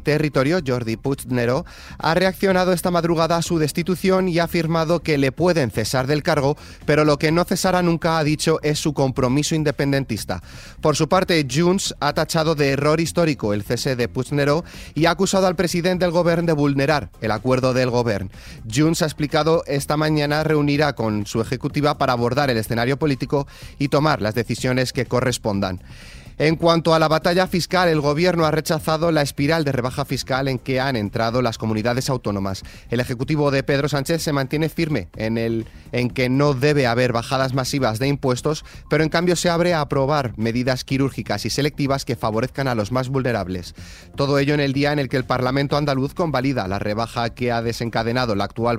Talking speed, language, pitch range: 190 wpm, Spanish, 120-155 Hz